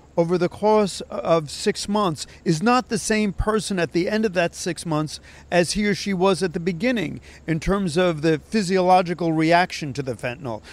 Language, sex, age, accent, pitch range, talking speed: English, male, 50-69, American, 150-190 Hz, 195 wpm